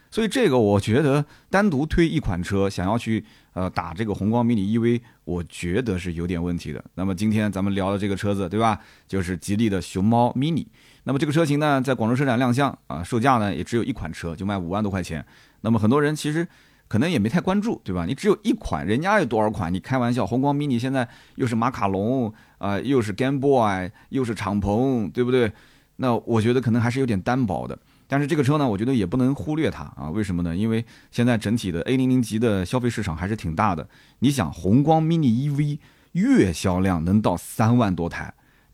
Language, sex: Chinese, male